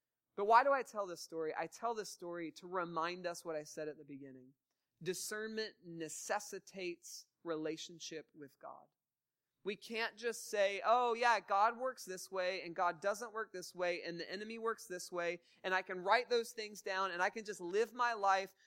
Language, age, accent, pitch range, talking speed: English, 30-49, American, 165-220 Hz, 195 wpm